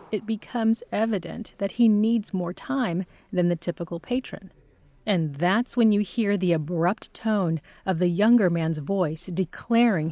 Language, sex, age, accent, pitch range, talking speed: English, female, 30-49, American, 165-220 Hz, 155 wpm